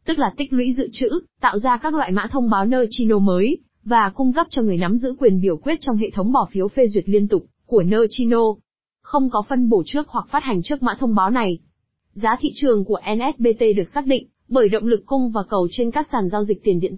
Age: 20-39